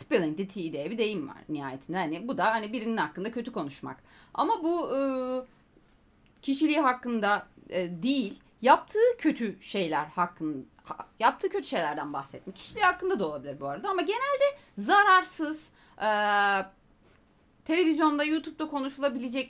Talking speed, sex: 130 wpm, female